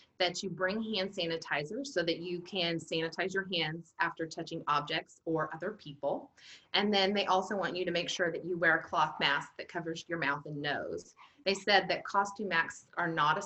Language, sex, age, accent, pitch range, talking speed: English, female, 30-49, American, 160-190 Hz, 210 wpm